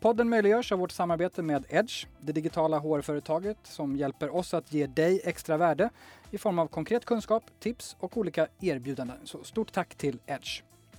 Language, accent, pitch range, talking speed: Swedish, native, 145-185 Hz, 175 wpm